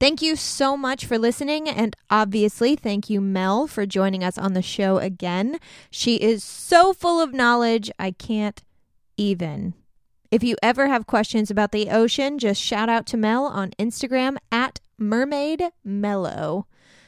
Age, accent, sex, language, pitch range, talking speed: 20-39, American, female, English, 200-265 Hz, 155 wpm